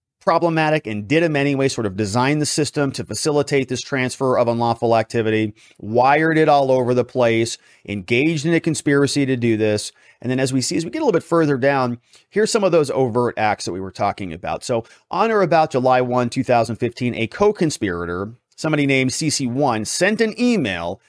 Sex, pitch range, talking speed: male, 120-165 Hz, 200 wpm